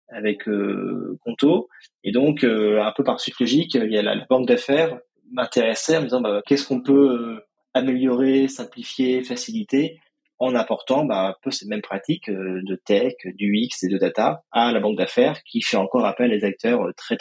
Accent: French